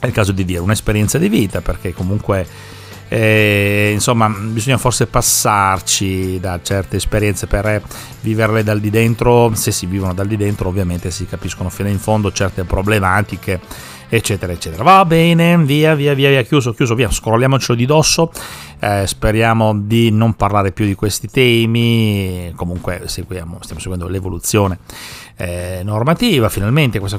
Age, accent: 30-49, native